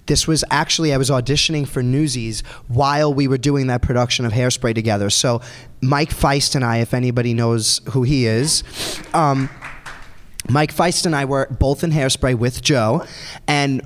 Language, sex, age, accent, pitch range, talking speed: English, male, 20-39, American, 120-140 Hz, 175 wpm